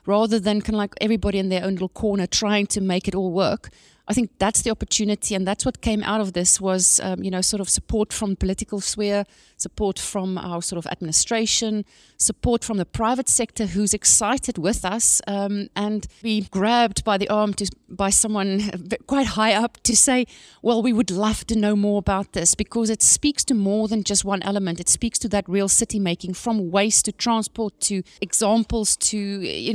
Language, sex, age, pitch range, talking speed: English, female, 30-49, 195-230 Hz, 205 wpm